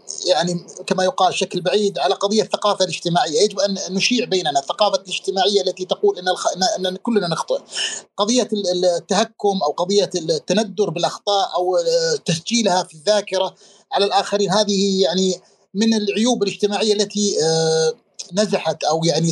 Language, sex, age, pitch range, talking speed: Arabic, male, 30-49, 185-225 Hz, 125 wpm